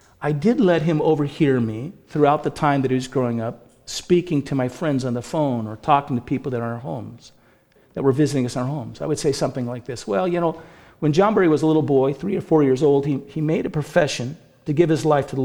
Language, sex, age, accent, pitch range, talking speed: English, male, 50-69, American, 120-150 Hz, 270 wpm